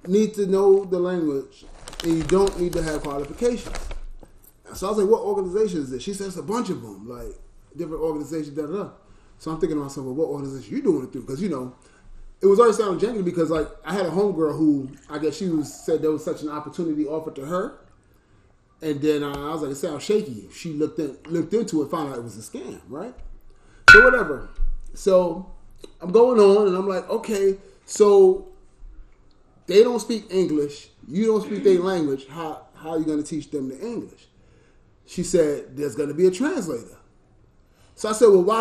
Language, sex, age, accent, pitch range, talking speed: English, male, 30-49, American, 155-215 Hz, 210 wpm